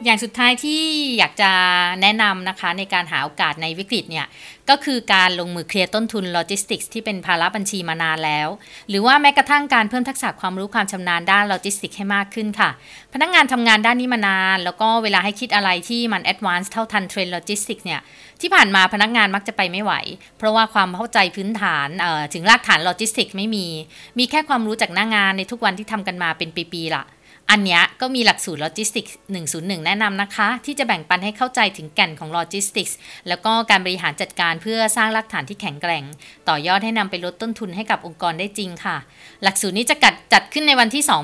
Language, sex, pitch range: Thai, female, 185-230 Hz